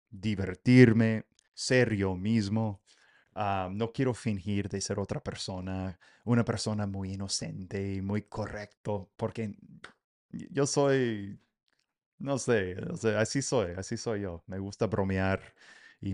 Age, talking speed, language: 30-49, 125 wpm, English